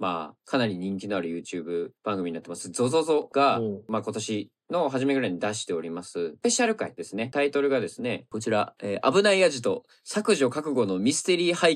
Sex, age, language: male, 20-39, Japanese